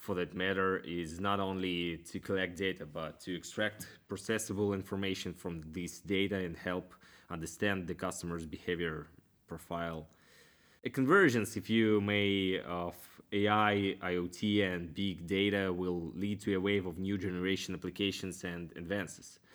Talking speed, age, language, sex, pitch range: 140 wpm, 20-39, English, male, 85-100 Hz